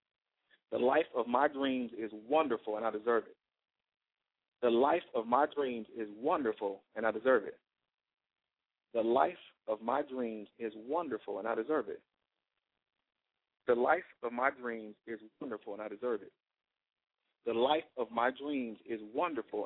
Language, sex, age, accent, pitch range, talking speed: English, male, 40-59, American, 115-150 Hz, 155 wpm